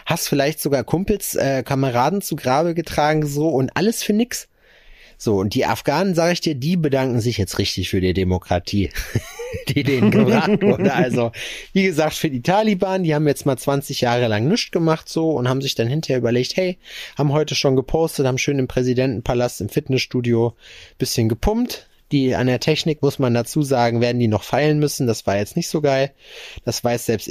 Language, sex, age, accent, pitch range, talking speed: German, male, 30-49, German, 110-150 Hz, 195 wpm